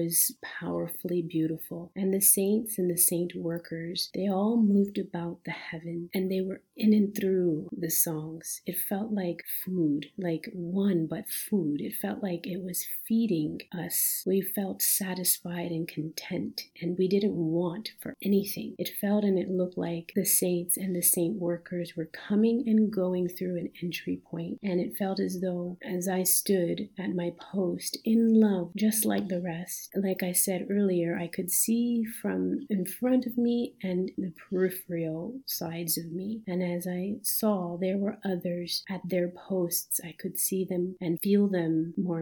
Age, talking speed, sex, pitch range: 40-59, 175 wpm, female, 170-200 Hz